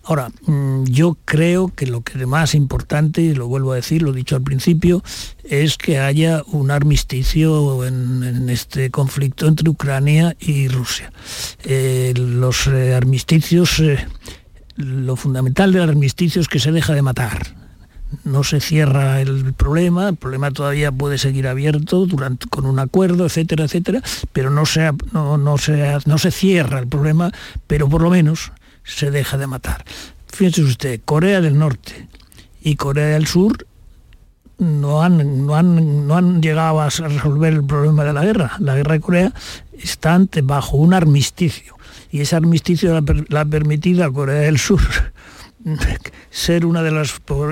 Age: 60-79